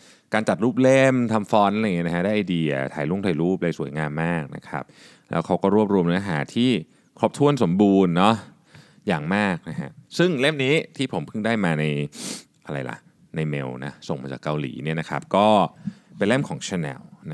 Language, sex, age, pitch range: Thai, male, 20-39, 85-130 Hz